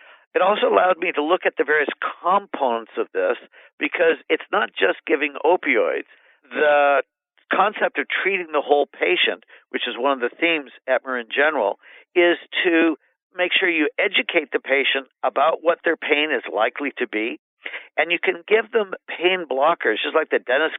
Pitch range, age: 140-190 Hz, 50-69